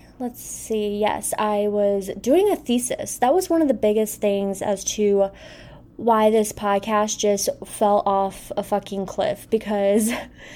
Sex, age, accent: female, 20-39, American